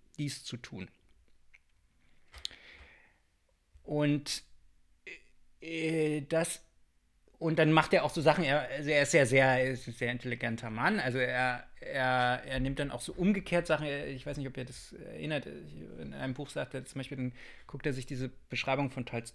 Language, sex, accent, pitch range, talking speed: German, male, German, 125-145 Hz, 175 wpm